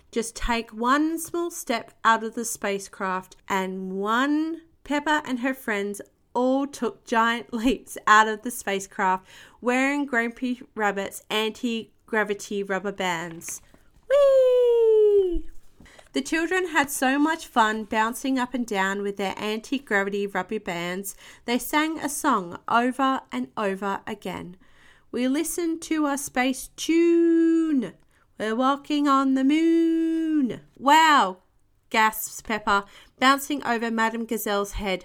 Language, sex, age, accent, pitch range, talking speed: English, female, 30-49, Australian, 205-280 Hz, 125 wpm